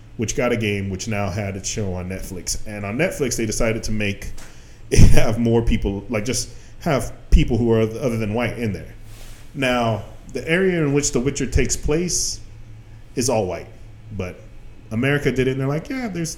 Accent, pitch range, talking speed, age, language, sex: American, 110-140 Hz, 200 wpm, 30-49, English, male